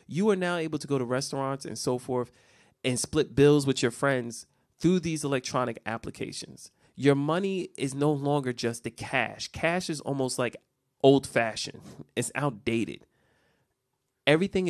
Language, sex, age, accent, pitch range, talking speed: English, male, 30-49, American, 125-155 Hz, 150 wpm